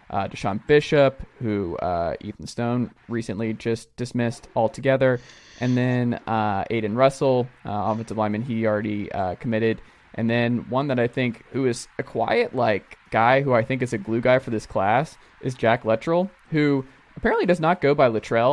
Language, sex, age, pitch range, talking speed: English, male, 20-39, 110-130 Hz, 180 wpm